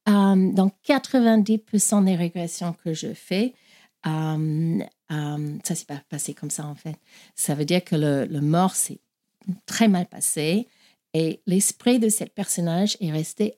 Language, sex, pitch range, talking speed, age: French, female, 160-225 Hz, 160 wpm, 50-69